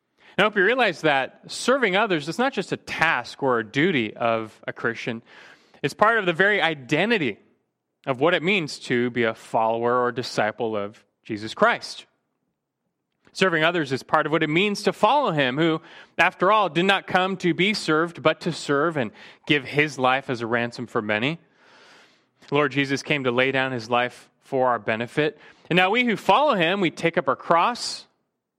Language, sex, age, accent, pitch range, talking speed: English, male, 30-49, American, 130-180 Hz, 190 wpm